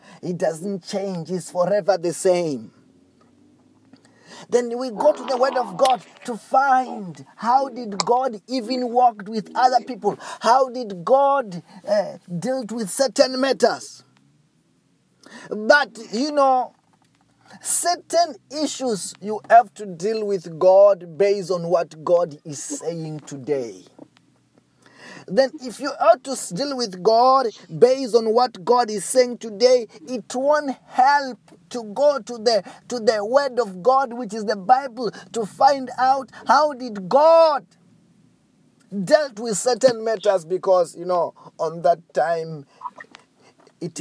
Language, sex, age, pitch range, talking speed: English, male, 30-49, 180-255 Hz, 135 wpm